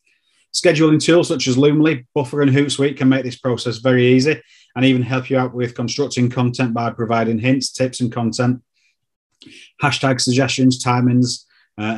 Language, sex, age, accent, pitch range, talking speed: English, male, 30-49, British, 115-135 Hz, 160 wpm